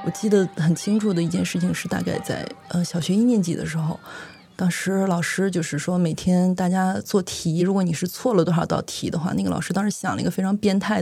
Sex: female